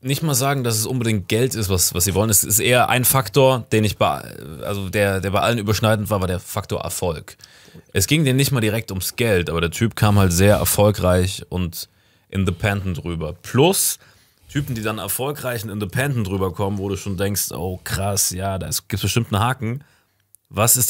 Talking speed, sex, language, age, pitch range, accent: 205 wpm, male, German, 30-49, 95-125 Hz, German